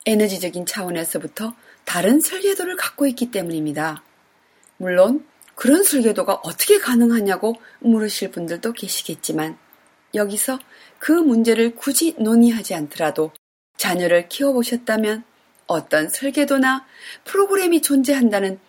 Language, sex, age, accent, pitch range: Korean, female, 30-49, native, 175-265 Hz